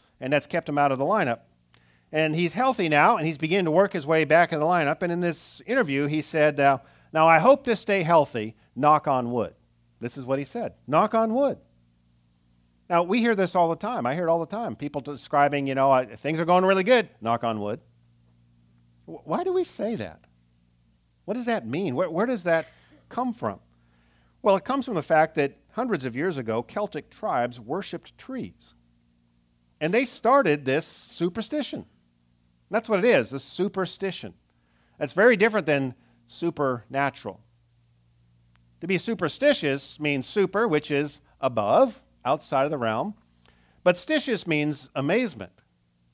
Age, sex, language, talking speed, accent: 50-69, male, English, 175 wpm, American